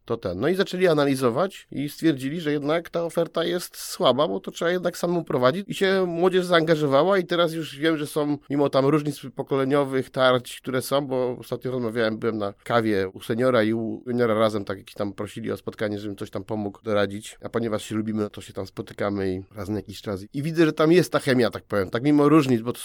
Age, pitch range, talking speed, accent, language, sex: 30-49, 115-140 Hz, 225 wpm, native, Polish, male